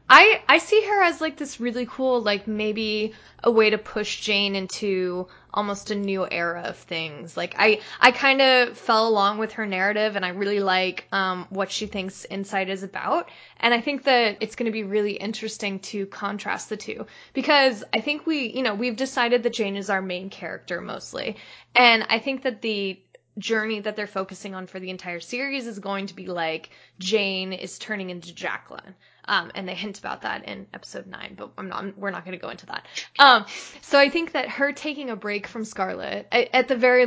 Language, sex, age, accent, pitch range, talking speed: English, female, 10-29, American, 195-240 Hz, 210 wpm